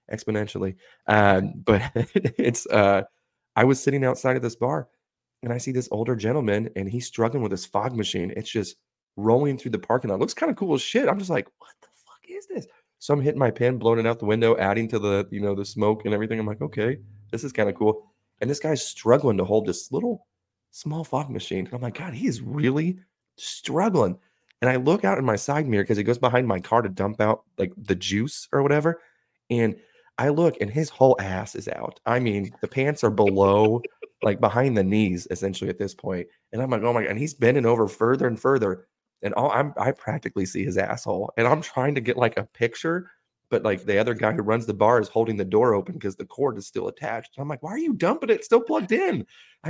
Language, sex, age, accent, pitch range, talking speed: English, male, 30-49, American, 105-145 Hz, 240 wpm